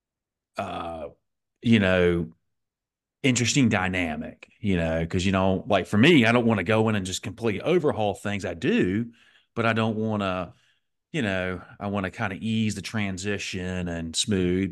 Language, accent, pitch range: English, American, 90-115 Hz